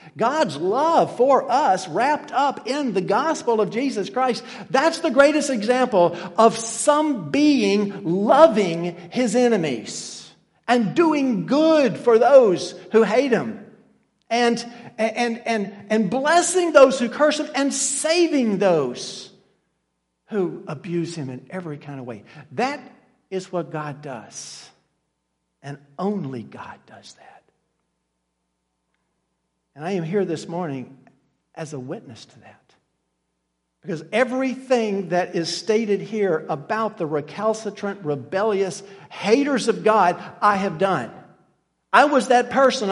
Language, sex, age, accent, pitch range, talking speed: English, male, 50-69, American, 175-265 Hz, 125 wpm